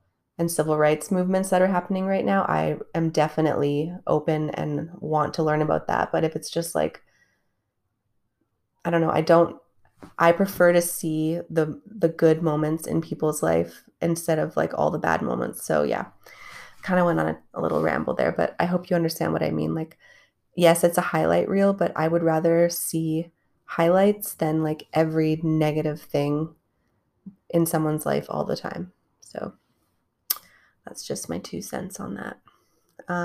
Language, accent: English, American